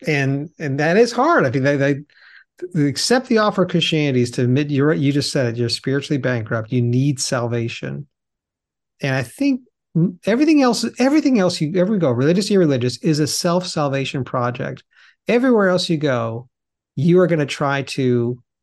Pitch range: 125-175 Hz